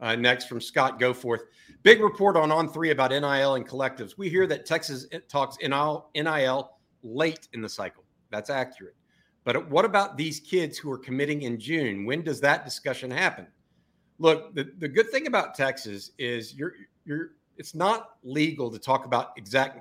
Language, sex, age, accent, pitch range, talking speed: English, male, 50-69, American, 120-155 Hz, 175 wpm